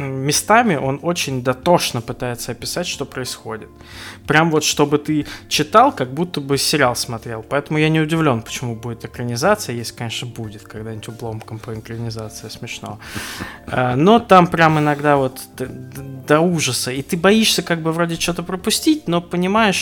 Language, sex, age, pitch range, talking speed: Russian, male, 20-39, 115-145 Hz, 150 wpm